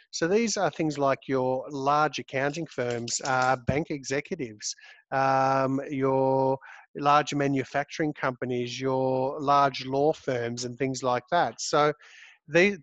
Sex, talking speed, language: male, 125 wpm, English